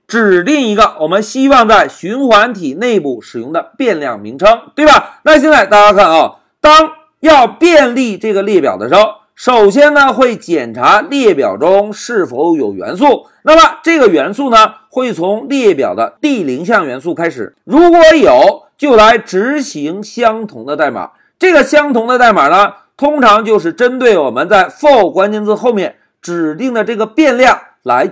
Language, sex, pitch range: Chinese, male, 215-305 Hz